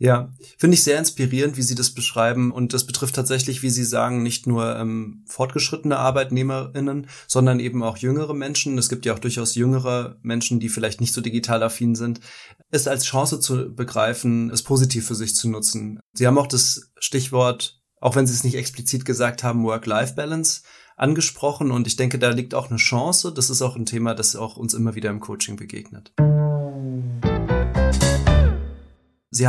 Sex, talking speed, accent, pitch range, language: male, 180 wpm, German, 115-130 Hz, German